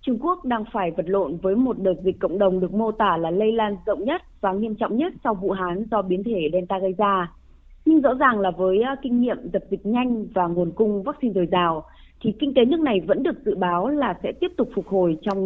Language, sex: Vietnamese, female